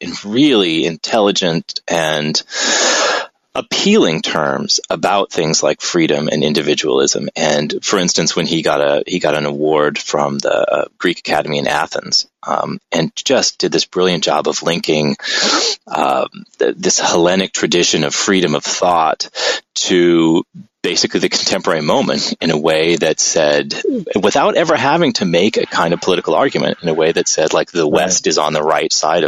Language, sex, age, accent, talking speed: English, male, 30-49, American, 160 wpm